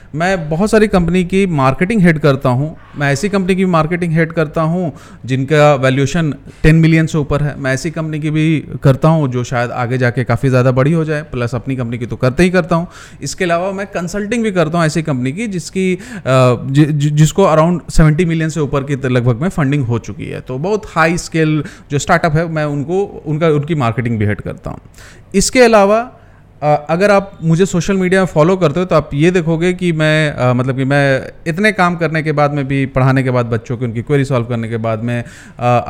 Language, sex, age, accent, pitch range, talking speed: Hindi, male, 30-49, native, 130-170 Hz, 220 wpm